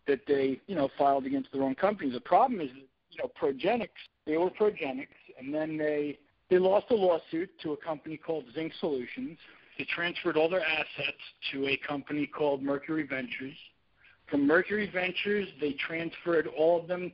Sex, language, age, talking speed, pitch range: male, English, 50-69, 175 wpm, 140-185 Hz